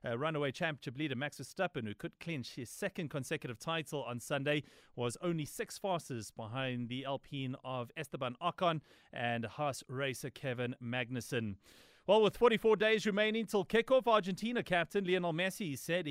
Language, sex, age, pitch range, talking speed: English, male, 30-49, 125-170 Hz, 155 wpm